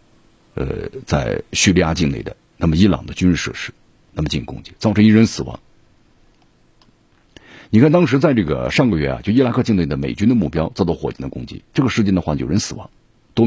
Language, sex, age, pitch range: Chinese, male, 50-69, 85-115 Hz